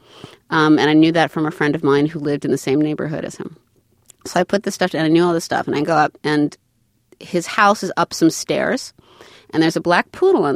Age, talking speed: 30-49, 265 wpm